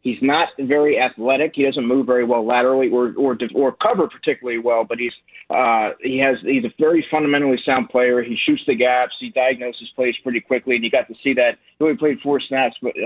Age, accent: 30-49, American